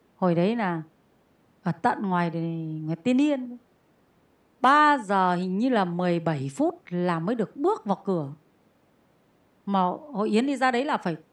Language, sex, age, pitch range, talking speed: Vietnamese, female, 30-49, 195-295 Hz, 155 wpm